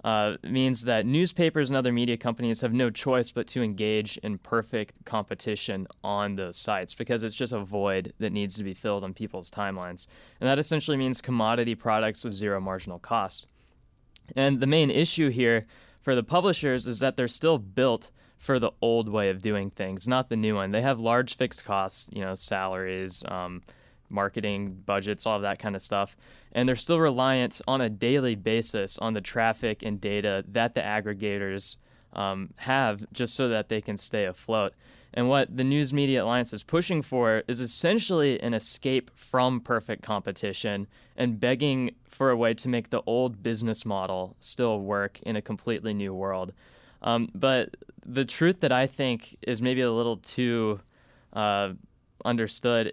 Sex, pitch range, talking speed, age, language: male, 105-125 Hz, 175 wpm, 20-39, English